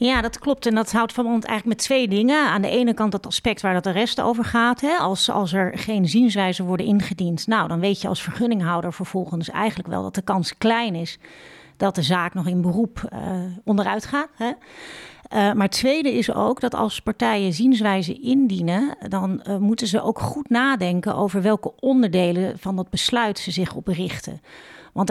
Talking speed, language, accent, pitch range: 190 wpm, Dutch, Dutch, 185-235 Hz